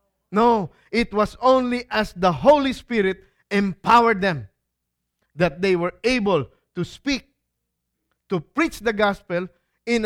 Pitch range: 175-275 Hz